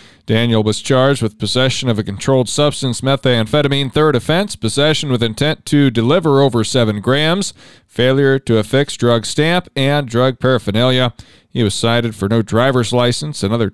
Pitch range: 115-145 Hz